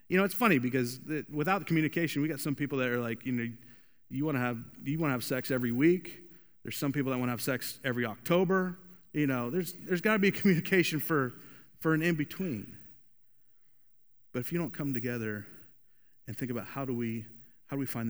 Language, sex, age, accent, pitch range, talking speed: English, male, 30-49, American, 115-140 Hz, 205 wpm